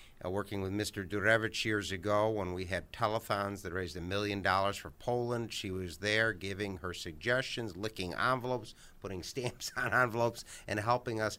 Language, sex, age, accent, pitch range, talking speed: English, male, 50-69, American, 95-115 Hz, 170 wpm